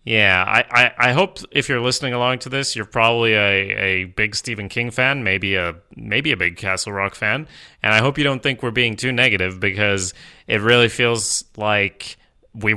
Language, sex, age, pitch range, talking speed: English, male, 30-49, 95-115 Hz, 200 wpm